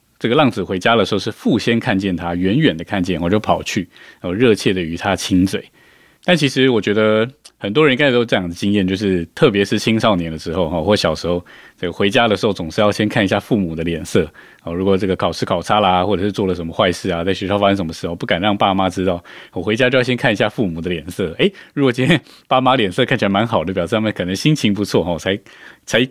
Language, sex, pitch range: Chinese, male, 90-110 Hz